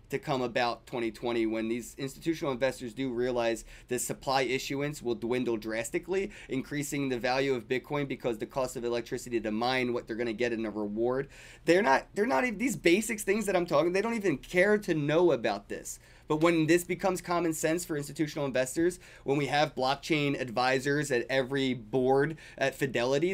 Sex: male